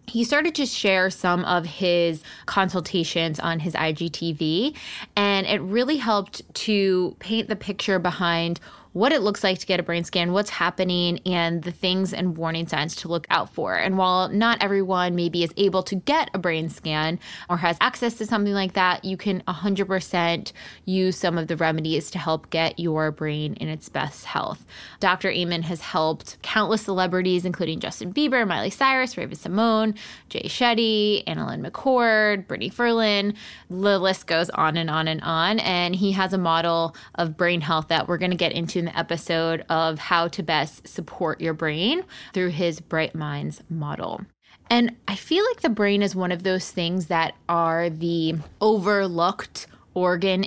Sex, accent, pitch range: female, American, 165-205 Hz